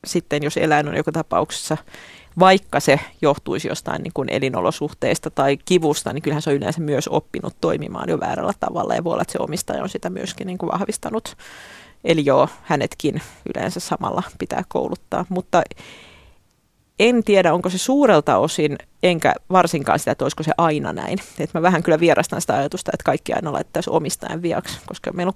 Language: Finnish